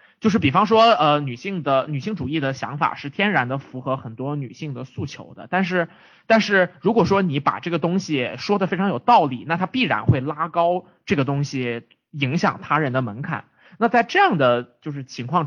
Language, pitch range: Chinese, 135-195 Hz